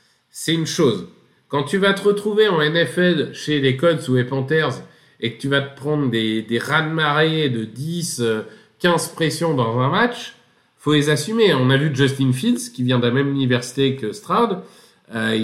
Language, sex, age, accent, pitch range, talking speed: French, male, 50-69, French, 125-170 Hz, 200 wpm